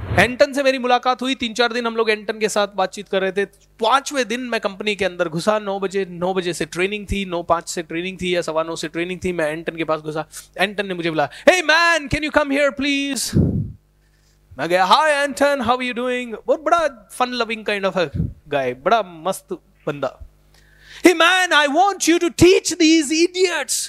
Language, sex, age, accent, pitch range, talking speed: Hindi, male, 30-49, native, 200-330 Hz, 135 wpm